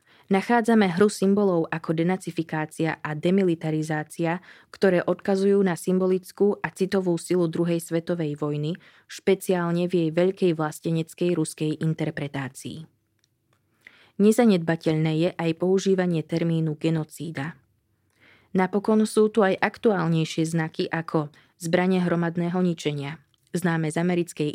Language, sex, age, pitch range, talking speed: Slovak, female, 20-39, 155-190 Hz, 105 wpm